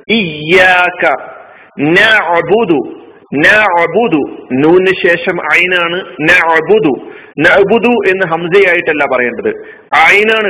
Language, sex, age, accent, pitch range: Malayalam, male, 50-69, native, 160-190 Hz